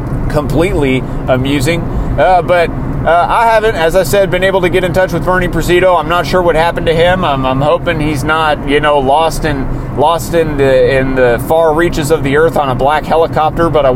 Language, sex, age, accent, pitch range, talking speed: English, male, 30-49, American, 130-165 Hz, 220 wpm